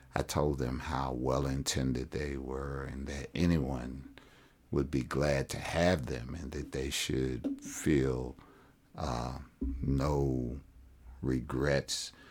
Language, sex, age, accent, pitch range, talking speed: English, male, 60-79, American, 65-70 Hz, 115 wpm